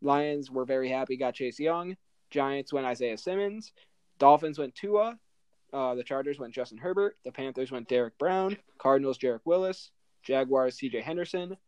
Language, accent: English, American